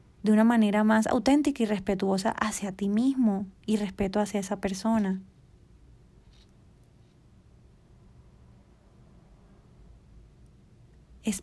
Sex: female